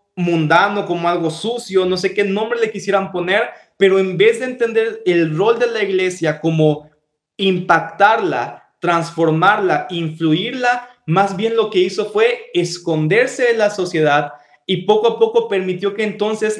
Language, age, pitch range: Spanish, 20-39, 165-215 Hz